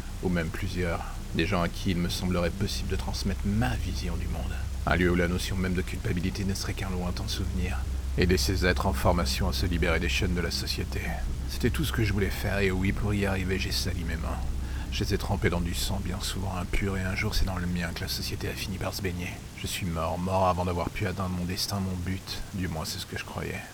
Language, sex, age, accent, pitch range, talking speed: French, male, 40-59, French, 85-100 Hz, 255 wpm